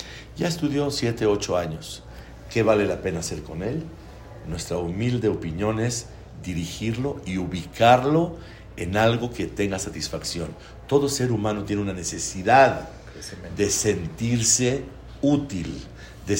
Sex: male